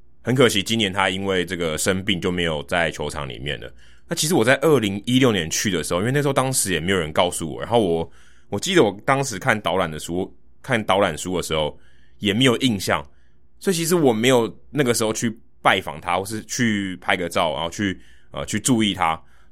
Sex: male